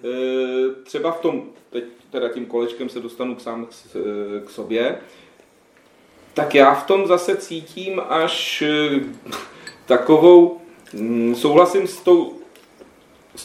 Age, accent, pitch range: 40-59, native, 125-175 Hz